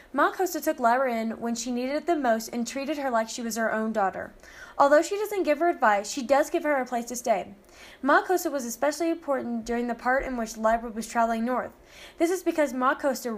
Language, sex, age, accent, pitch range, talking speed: English, female, 10-29, American, 230-290 Hz, 240 wpm